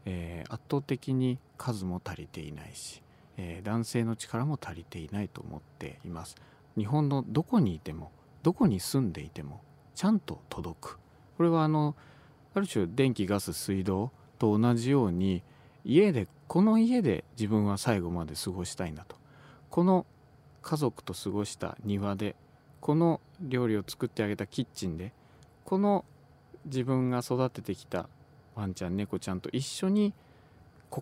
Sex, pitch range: male, 95-145 Hz